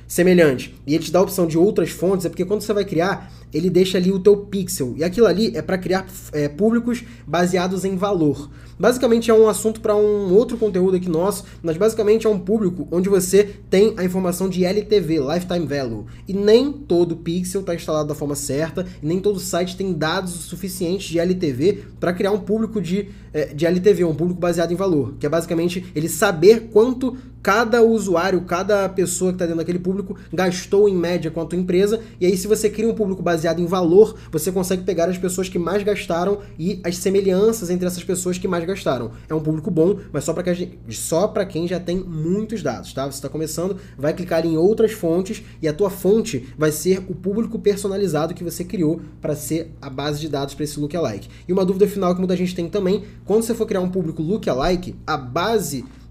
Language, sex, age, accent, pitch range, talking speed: Portuguese, male, 20-39, Brazilian, 165-200 Hz, 210 wpm